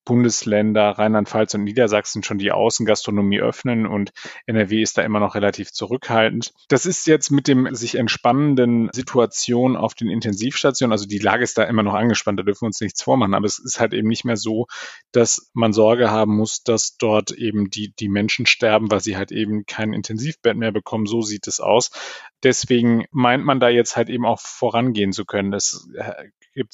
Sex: male